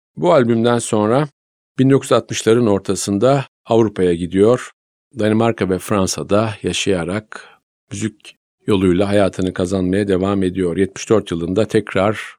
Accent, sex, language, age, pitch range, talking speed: native, male, Turkish, 50-69, 95-115 Hz, 95 wpm